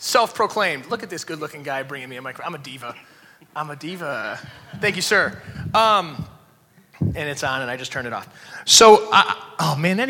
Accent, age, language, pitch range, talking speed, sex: American, 30-49, English, 170-230 Hz, 200 wpm, male